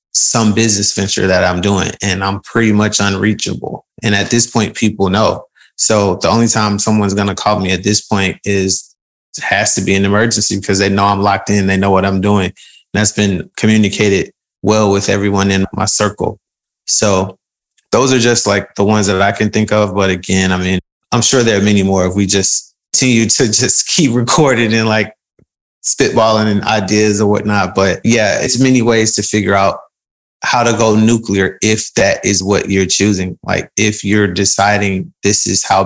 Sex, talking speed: male, 195 wpm